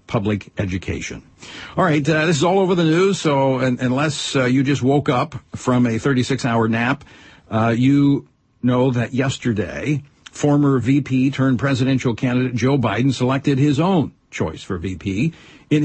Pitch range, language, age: 115-155 Hz, English, 60-79